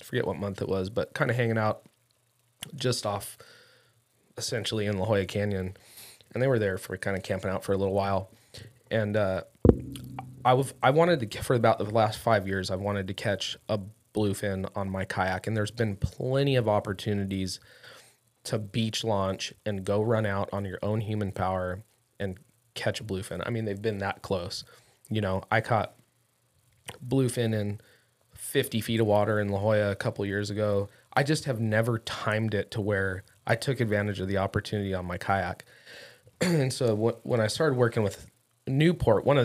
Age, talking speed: 20-39, 190 wpm